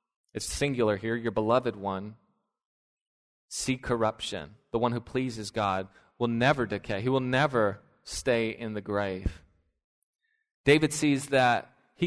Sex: male